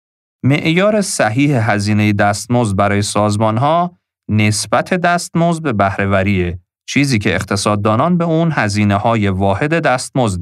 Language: Persian